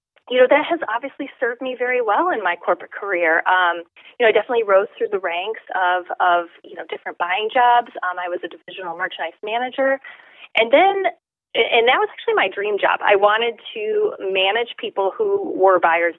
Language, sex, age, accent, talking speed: English, female, 30-49, American, 195 wpm